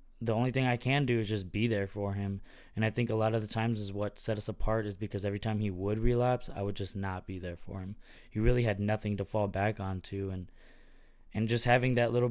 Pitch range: 100-115 Hz